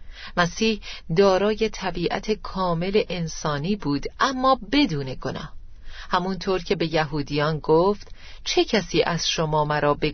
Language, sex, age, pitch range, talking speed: Persian, female, 40-59, 160-215 Hz, 120 wpm